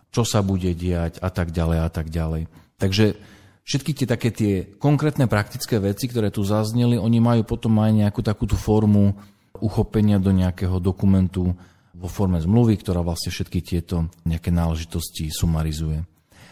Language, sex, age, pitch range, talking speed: Slovak, male, 40-59, 90-110 Hz, 155 wpm